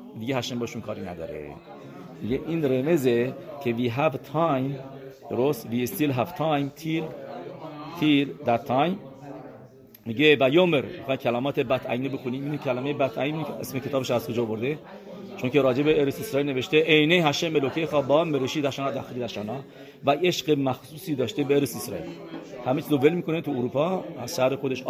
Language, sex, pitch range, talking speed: English, male, 130-165 Hz, 150 wpm